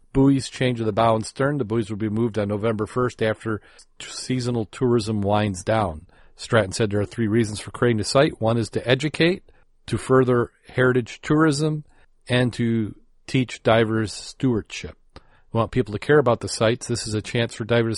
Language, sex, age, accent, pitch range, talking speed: English, male, 40-59, American, 110-125 Hz, 190 wpm